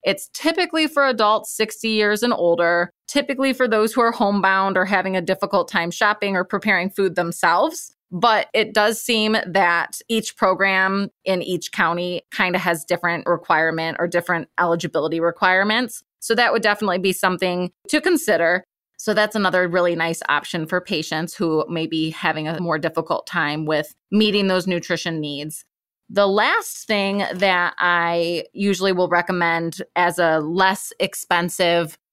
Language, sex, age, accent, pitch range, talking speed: English, female, 20-39, American, 170-215 Hz, 155 wpm